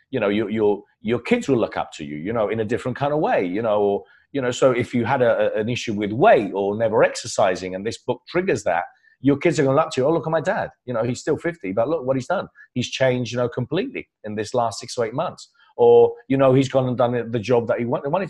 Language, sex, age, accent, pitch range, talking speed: English, male, 40-59, British, 105-150 Hz, 290 wpm